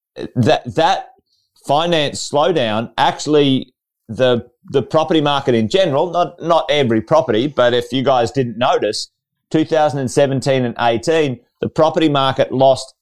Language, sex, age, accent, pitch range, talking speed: English, male, 30-49, Australian, 120-150 Hz, 145 wpm